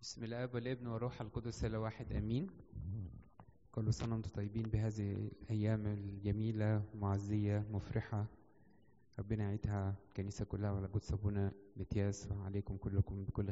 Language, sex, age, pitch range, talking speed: English, male, 20-39, 105-120 Hz, 110 wpm